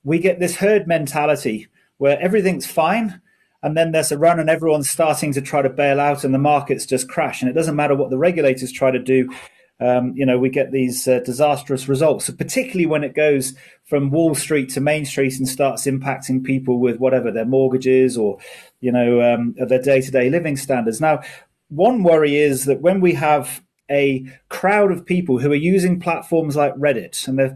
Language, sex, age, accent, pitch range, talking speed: English, male, 30-49, British, 130-160 Hz, 205 wpm